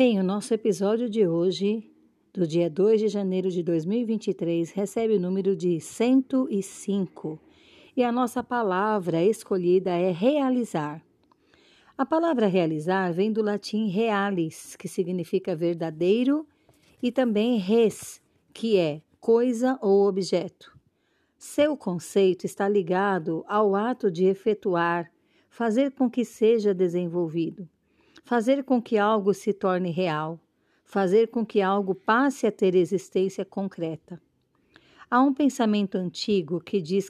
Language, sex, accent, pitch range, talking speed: Portuguese, female, Brazilian, 180-225 Hz, 125 wpm